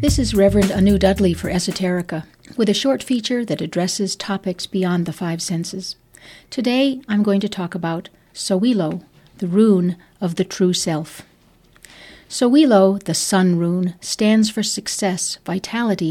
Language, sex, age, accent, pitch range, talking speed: English, female, 60-79, American, 175-215 Hz, 145 wpm